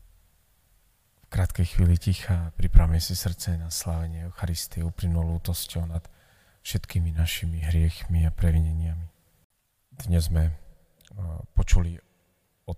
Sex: male